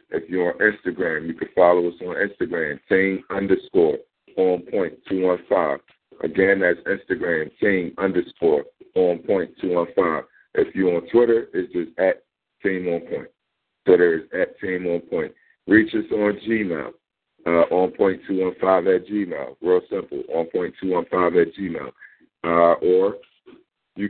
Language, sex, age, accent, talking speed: English, male, 50-69, American, 150 wpm